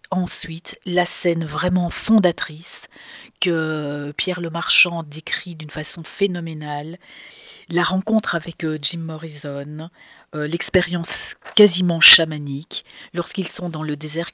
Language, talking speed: French, 110 wpm